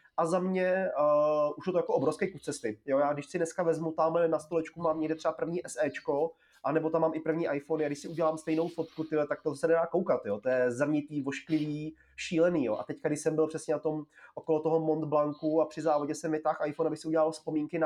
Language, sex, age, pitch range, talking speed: Czech, male, 30-49, 150-170 Hz, 240 wpm